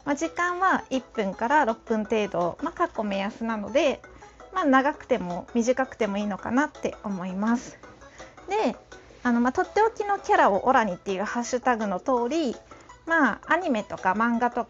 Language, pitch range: Japanese, 215-280 Hz